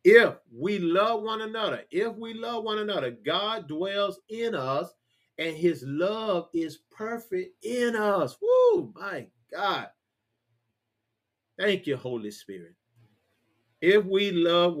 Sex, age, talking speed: male, 40-59, 125 wpm